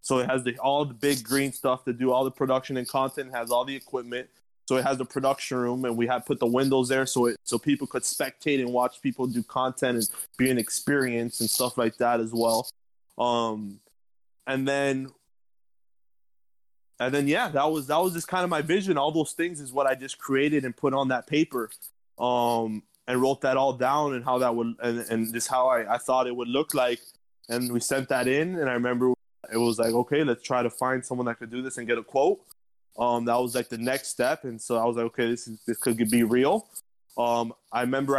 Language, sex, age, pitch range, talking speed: English, male, 20-39, 120-140 Hz, 235 wpm